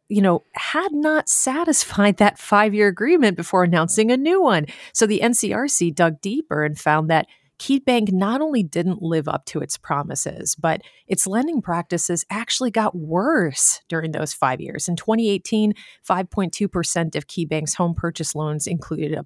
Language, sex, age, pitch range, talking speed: English, female, 30-49, 155-195 Hz, 160 wpm